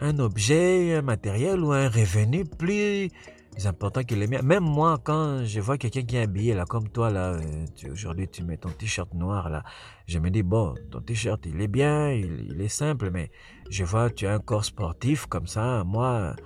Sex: male